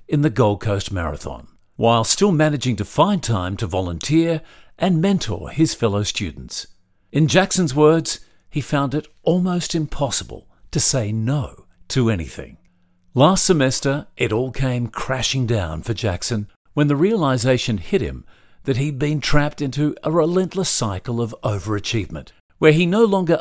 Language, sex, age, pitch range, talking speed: English, male, 50-69, 105-155 Hz, 150 wpm